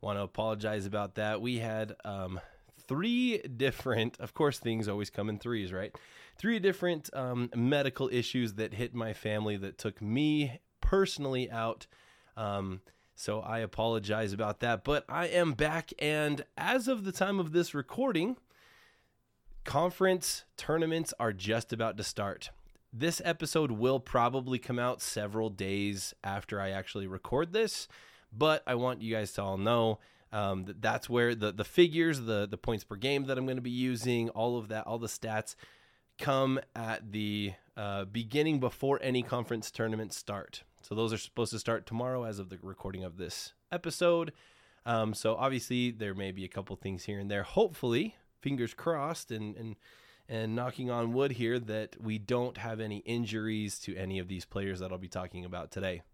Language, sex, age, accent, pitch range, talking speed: English, male, 20-39, American, 105-135 Hz, 175 wpm